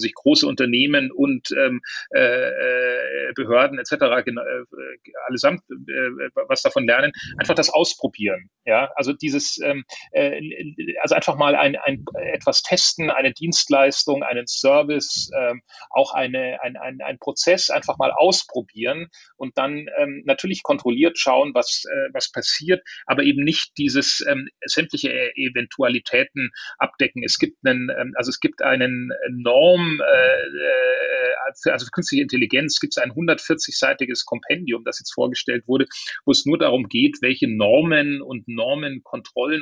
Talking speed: 140 wpm